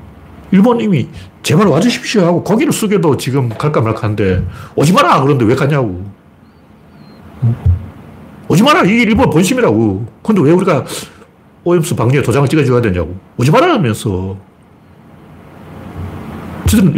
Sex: male